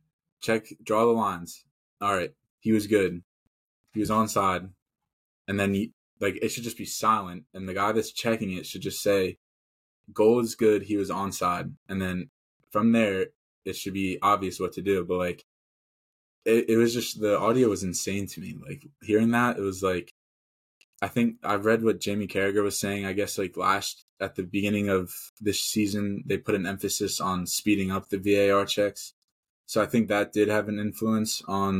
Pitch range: 95-105 Hz